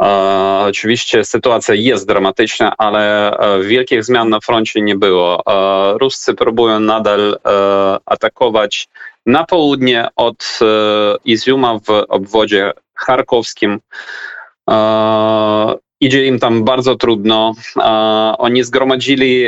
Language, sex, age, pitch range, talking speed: Polish, male, 20-39, 100-115 Hz, 90 wpm